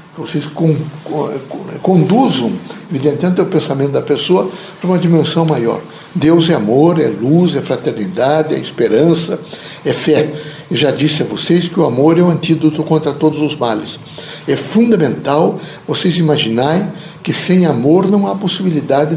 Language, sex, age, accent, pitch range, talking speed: Portuguese, male, 60-79, Brazilian, 155-185 Hz, 145 wpm